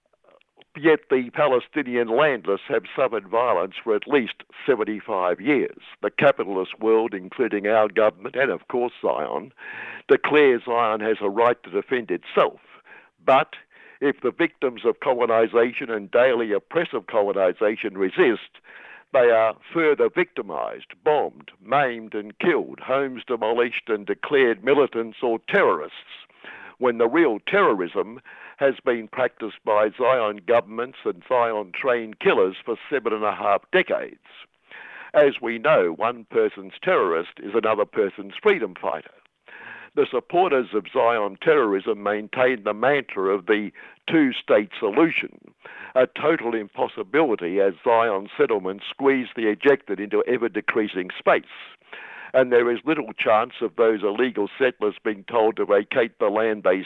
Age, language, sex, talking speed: 60-79, English, male, 135 wpm